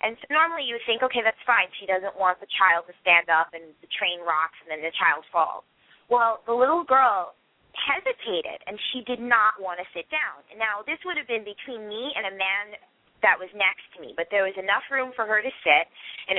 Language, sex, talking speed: English, female, 235 wpm